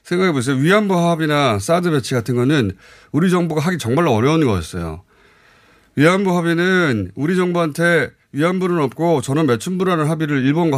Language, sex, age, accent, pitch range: Korean, male, 30-49, native, 130-195 Hz